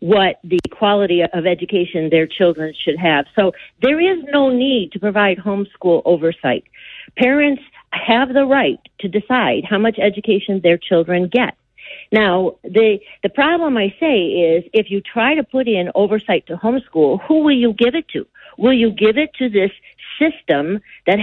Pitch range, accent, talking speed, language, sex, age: 180-240 Hz, American, 170 wpm, English, female, 50-69